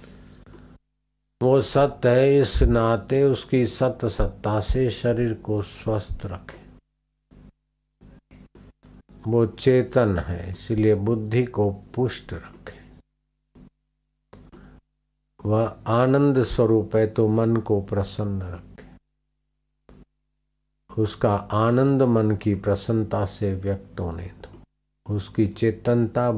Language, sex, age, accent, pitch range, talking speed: Hindi, male, 50-69, native, 85-115 Hz, 90 wpm